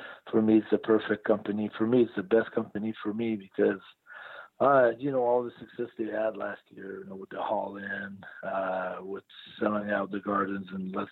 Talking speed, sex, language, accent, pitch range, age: 205 wpm, male, English, American, 105-120 Hz, 50-69